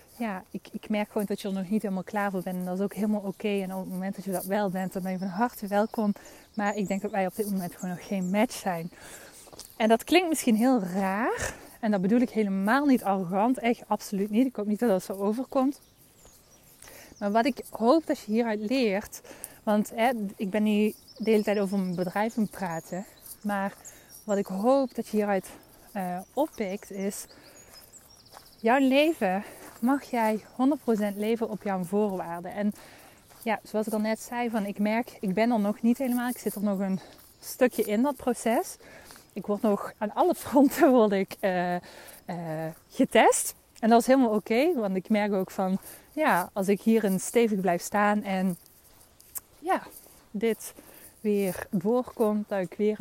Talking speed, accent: 195 wpm, Dutch